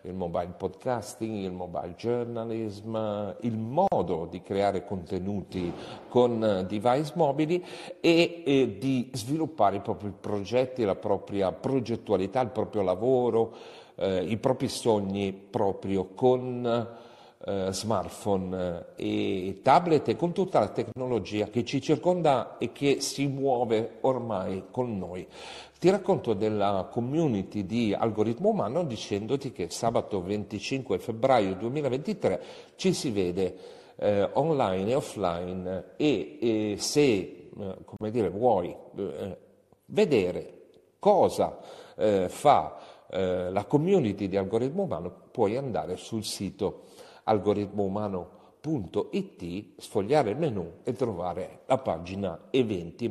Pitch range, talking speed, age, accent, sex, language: 100-135 Hz, 105 wpm, 50-69, Italian, male, English